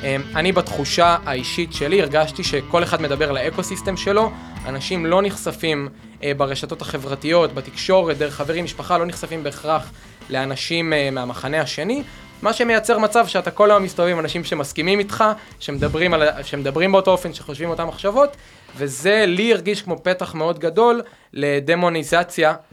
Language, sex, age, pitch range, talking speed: Hebrew, male, 20-39, 145-185 Hz, 140 wpm